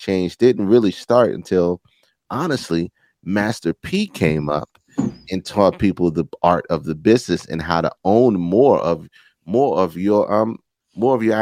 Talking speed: 165 wpm